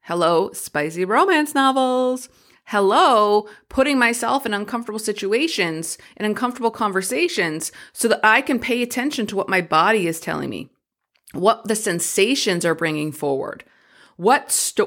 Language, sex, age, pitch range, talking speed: English, female, 30-49, 185-255 Hz, 135 wpm